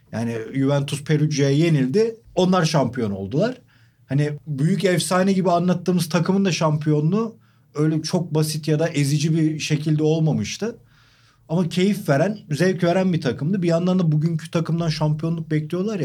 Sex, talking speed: male, 140 wpm